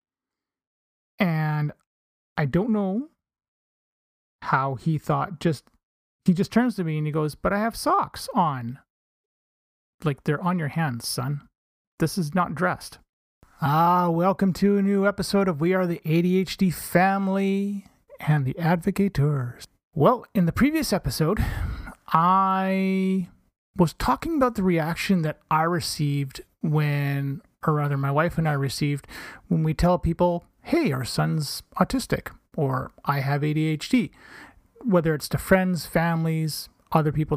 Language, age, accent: English, 30-49, American